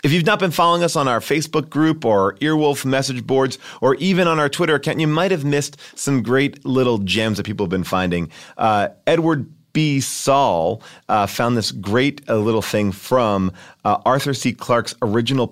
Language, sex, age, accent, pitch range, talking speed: English, male, 30-49, American, 105-155 Hz, 195 wpm